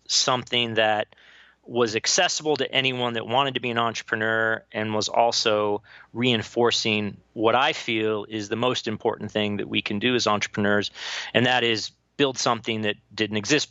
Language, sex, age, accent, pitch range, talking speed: English, male, 30-49, American, 105-120 Hz, 165 wpm